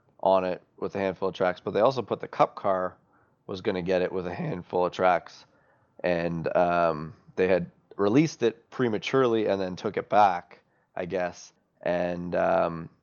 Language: English